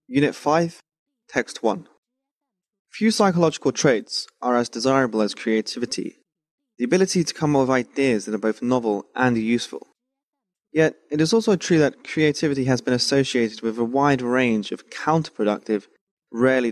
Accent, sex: British, male